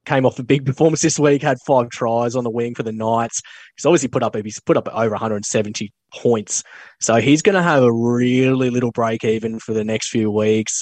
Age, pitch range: 10-29, 110-130 Hz